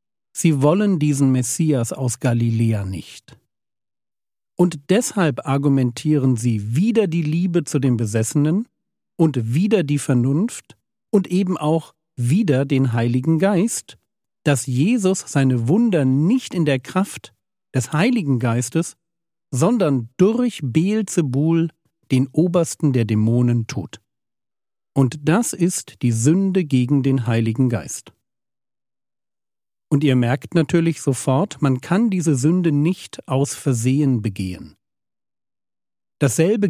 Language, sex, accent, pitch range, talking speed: German, male, German, 125-165 Hz, 115 wpm